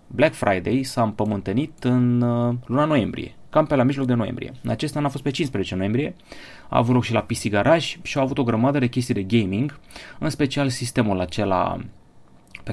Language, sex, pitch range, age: Romanian, male, 100-130 Hz, 30-49